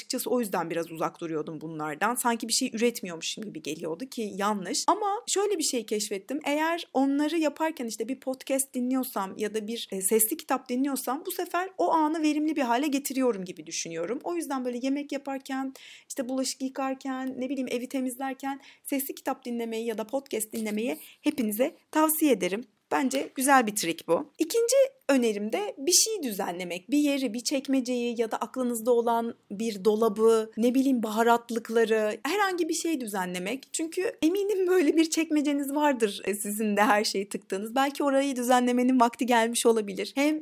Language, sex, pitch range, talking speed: Turkish, female, 220-290 Hz, 165 wpm